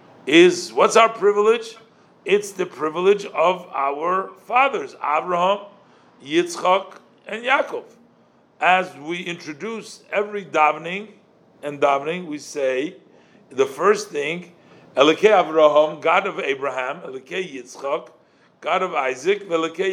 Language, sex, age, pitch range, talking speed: English, male, 50-69, 160-225 Hz, 110 wpm